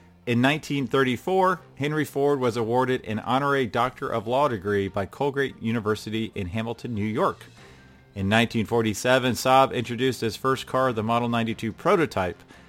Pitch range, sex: 110-130 Hz, male